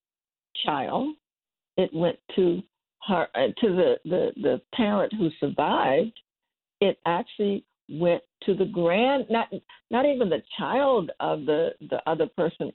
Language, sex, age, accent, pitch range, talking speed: English, female, 60-79, American, 155-230 Hz, 135 wpm